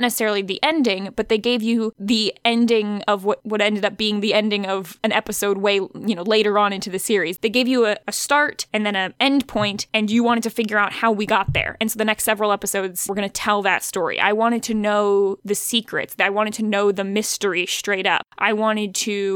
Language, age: English, 10-29